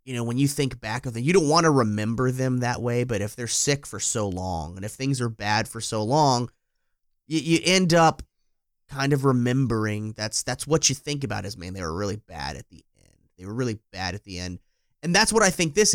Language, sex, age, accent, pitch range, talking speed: English, male, 30-49, American, 110-140 Hz, 250 wpm